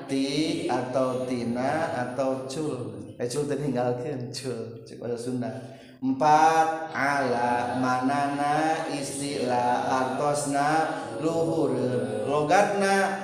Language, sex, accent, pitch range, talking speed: Indonesian, male, native, 125-150 Hz, 55 wpm